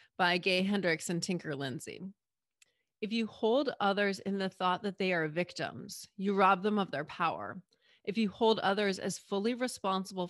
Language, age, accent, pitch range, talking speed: English, 30-49, American, 170-200 Hz, 175 wpm